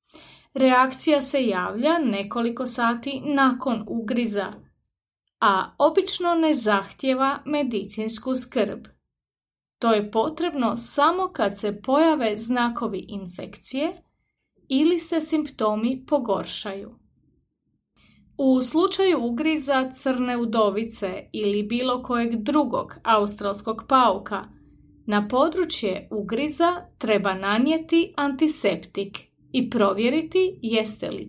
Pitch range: 210-290 Hz